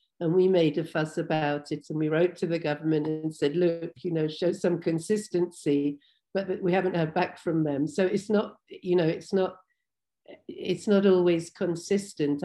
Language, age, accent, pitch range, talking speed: English, 50-69, British, 155-180 Hz, 195 wpm